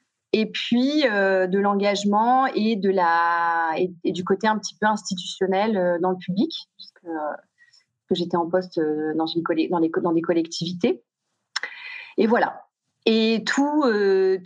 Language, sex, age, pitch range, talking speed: French, female, 30-49, 185-230 Hz, 160 wpm